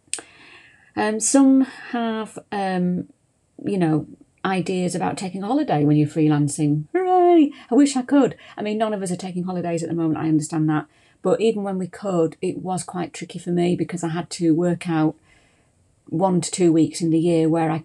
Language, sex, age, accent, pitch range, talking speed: English, female, 40-59, British, 155-185 Hz, 200 wpm